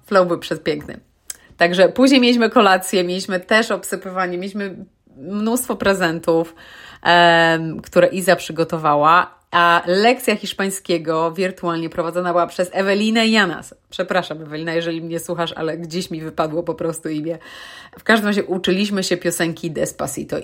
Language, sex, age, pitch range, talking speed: Polish, female, 30-49, 170-220 Hz, 130 wpm